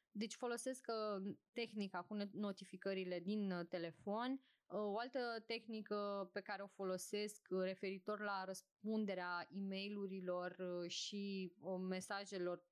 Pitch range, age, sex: 185-215 Hz, 20-39, female